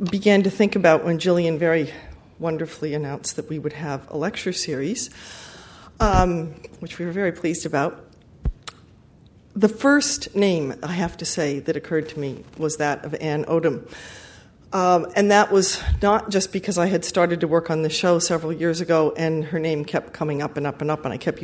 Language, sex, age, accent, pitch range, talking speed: English, female, 40-59, American, 155-195 Hz, 195 wpm